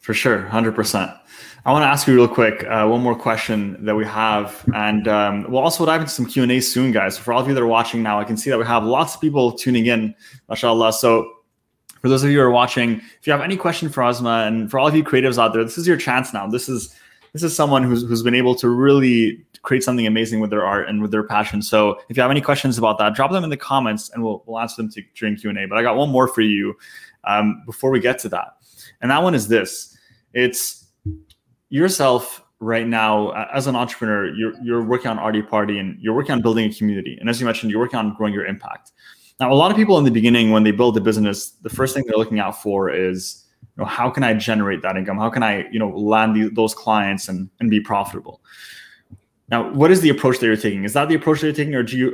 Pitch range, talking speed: 105-125 Hz, 260 wpm